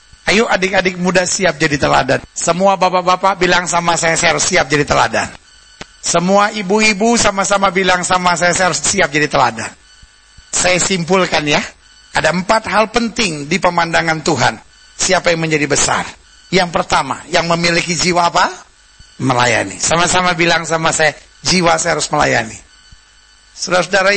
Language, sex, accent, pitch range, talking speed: Indonesian, male, native, 165-195 Hz, 140 wpm